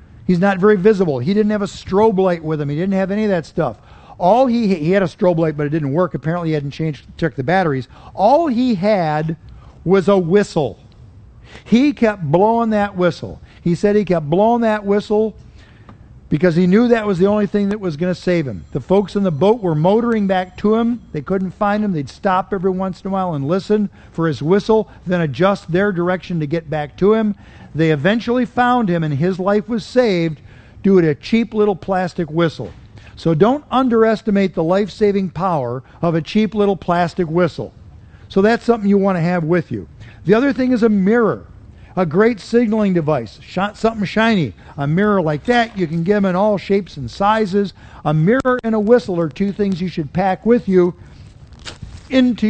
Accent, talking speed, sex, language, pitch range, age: American, 205 wpm, male, English, 160-210 Hz, 50-69